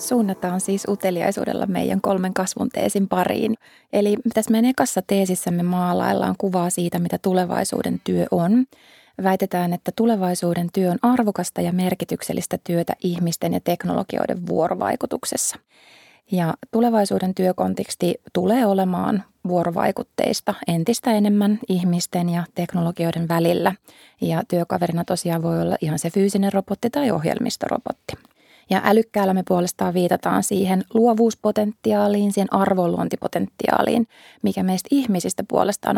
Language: Finnish